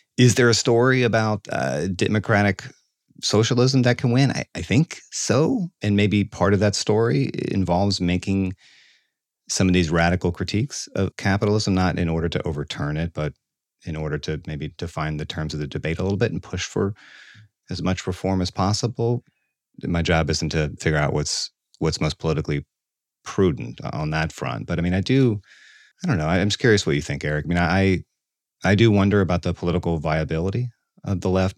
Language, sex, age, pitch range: English, male, 30-49, 80-105 Hz